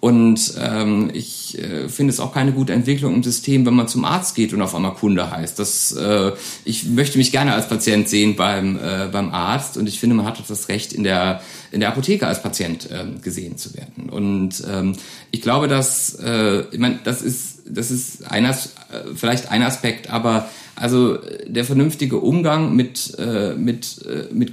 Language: German